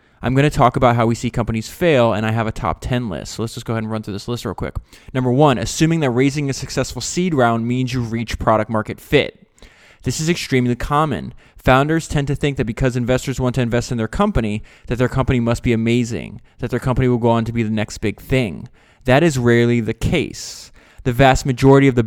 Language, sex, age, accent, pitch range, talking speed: English, male, 20-39, American, 115-140 Hz, 240 wpm